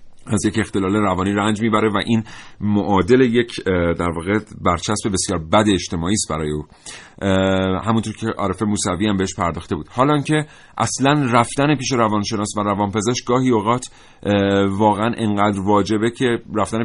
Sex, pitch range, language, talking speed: male, 100-120 Hz, Persian, 155 wpm